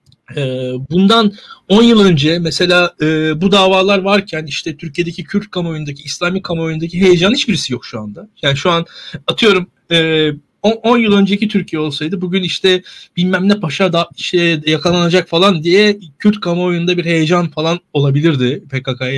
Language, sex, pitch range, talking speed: Turkish, male, 155-205 Hz, 140 wpm